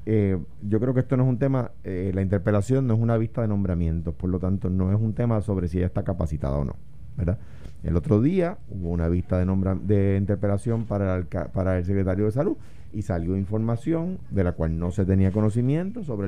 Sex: male